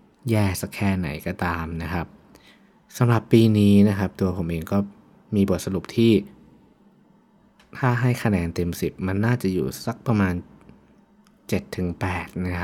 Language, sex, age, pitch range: Thai, male, 20-39, 90-110 Hz